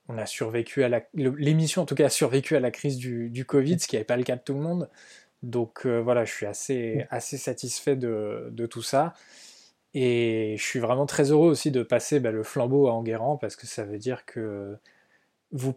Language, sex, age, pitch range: French, male, 20-39, 110-140 Hz